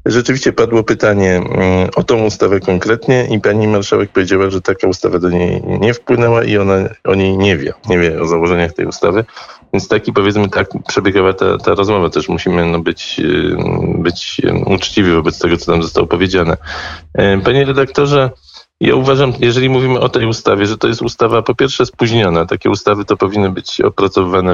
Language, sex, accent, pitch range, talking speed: Polish, male, native, 90-115 Hz, 175 wpm